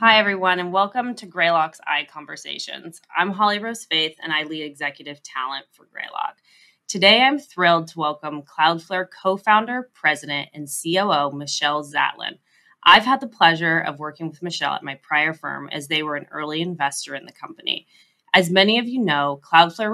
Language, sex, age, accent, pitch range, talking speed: English, female, 20-39, American, 150-190 Hz, 170 wpm